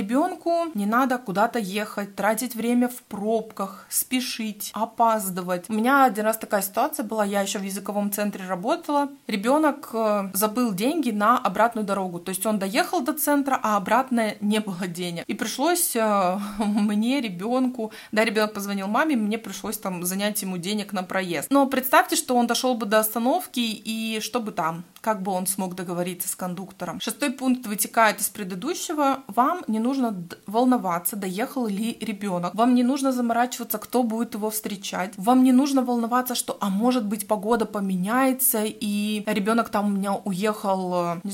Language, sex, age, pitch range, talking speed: Russian, female, 20-39, 200-250 Hz, 165 wpm